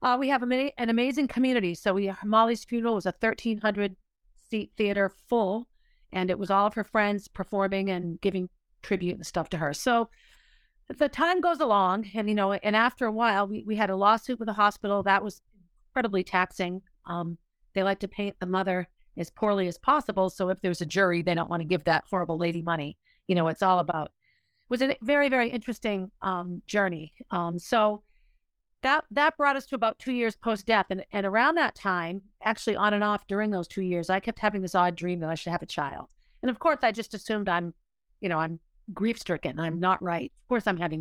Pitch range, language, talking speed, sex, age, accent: 185-230 Hz, English, 220 wpm, female, 40-59, American